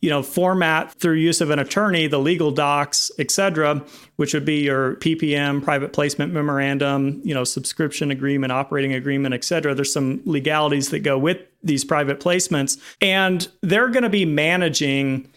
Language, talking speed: English, 170 wpm